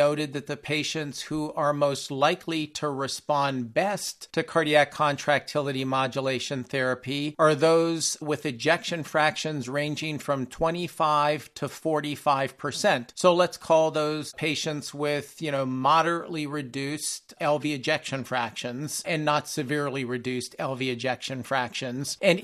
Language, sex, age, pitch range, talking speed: English, male, 50-69, 140-160 Hz, 130 wpm